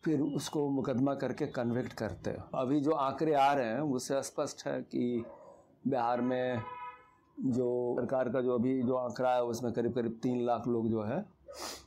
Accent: native